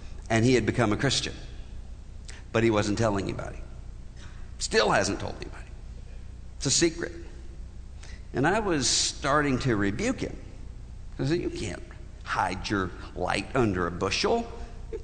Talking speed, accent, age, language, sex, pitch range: 145 wpm, American, 60-79, English, male, 100-165 Hz